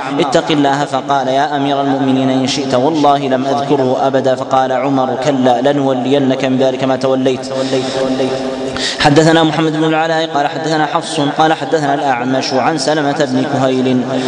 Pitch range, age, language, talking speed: 130-150 Hz, 20-39, Arabic, 145 wpm